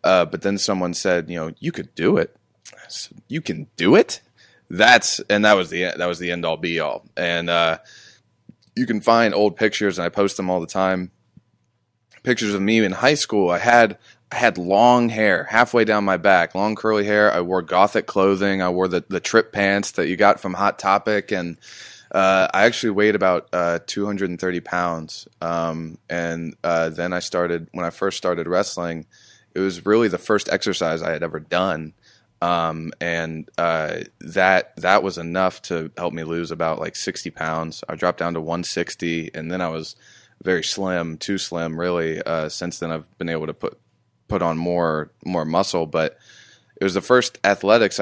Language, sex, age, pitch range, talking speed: English, male, 20-39, 85-100 Hz, 195 wpm